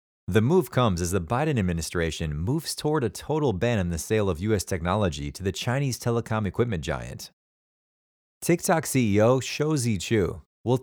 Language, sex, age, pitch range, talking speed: English, male, 30-49, 95-140 Hz, 160 wpm